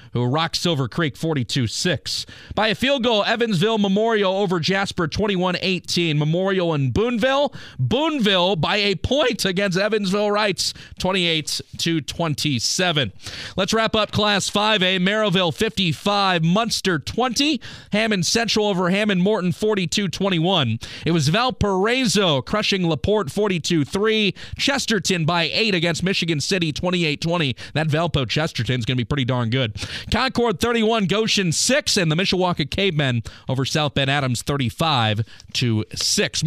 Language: English